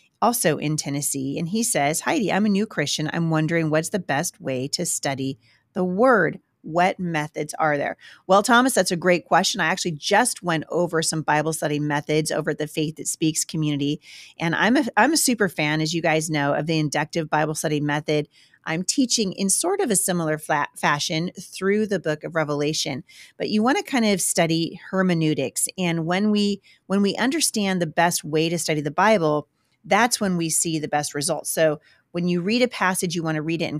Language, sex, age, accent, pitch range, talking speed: English, female, 40-59, American, 155-190 Hz, 205 wpm